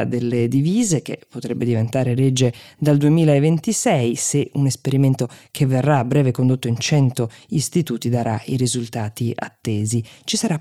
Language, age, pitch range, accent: Italian, 20-39, 120-150 Hz, native